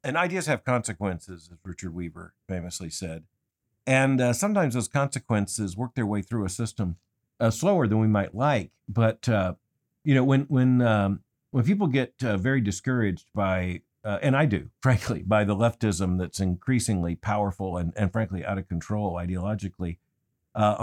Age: 50-69